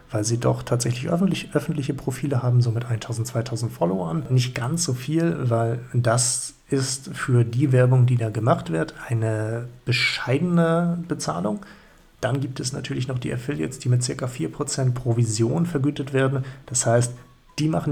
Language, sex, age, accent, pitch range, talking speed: German, male, 40-59, German, 120-140 Hz, 160 wpm